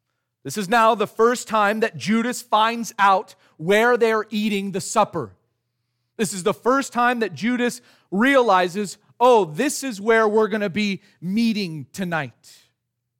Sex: male